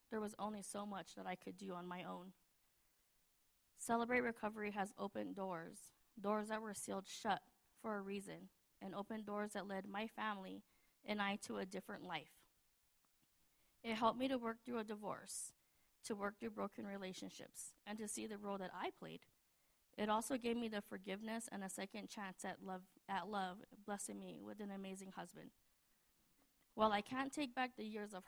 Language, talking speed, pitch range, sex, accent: English, 185 wpm, 190-220 Hz, female, American